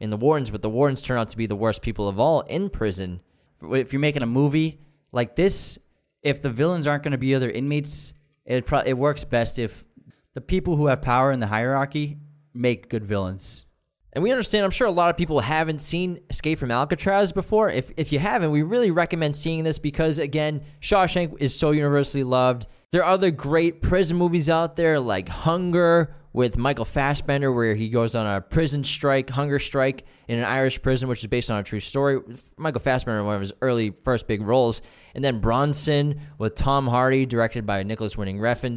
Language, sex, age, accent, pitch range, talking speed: English, male, 10-29, American, 120-160 Hz, 205 wpm